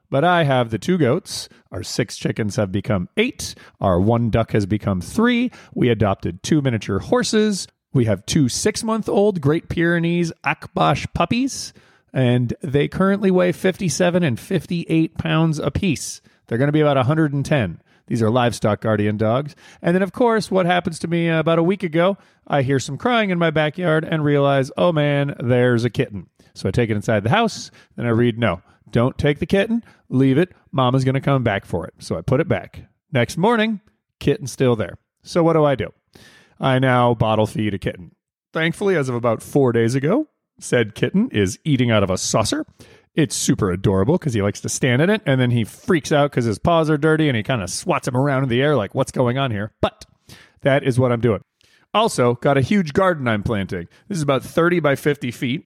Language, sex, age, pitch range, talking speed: English, male, 40-59, 115-170 Hz, 210 wpm